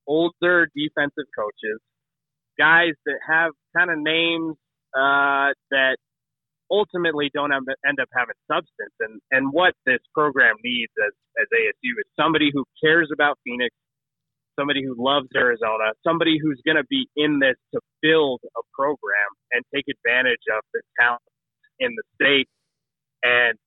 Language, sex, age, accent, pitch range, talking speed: English, male, 30-49, American, 135-175 Hz, 145 wpm